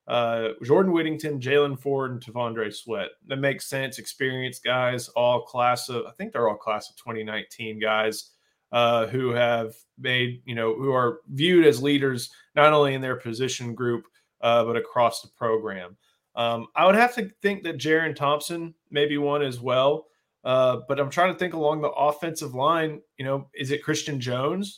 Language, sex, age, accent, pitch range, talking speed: English, male, 20-39, American, 120-150 Hz, 185 wpm